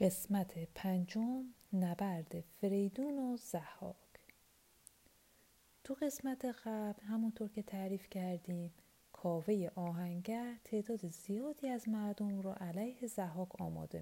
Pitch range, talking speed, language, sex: 180-230 Hz, 100 wpm, Persian, female